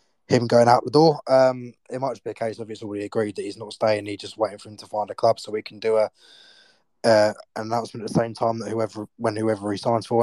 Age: 20-39